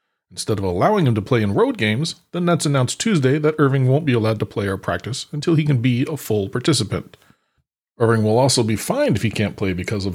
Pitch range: 110-150 Hz